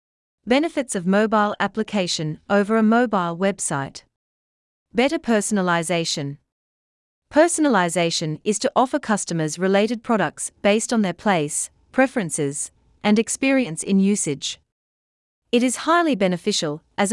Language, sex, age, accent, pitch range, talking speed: English, female, 40-59, Australian, 155-230 Hz, 110 wpm